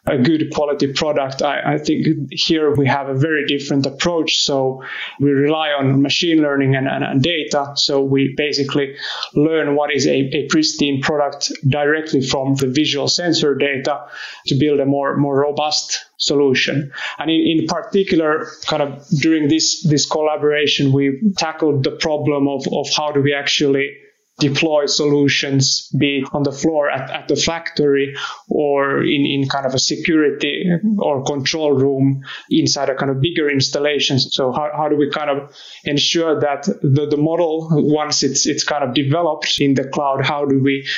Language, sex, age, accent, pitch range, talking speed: English, male, 30-49, Finnish, 140-155 Hz, 170 wpm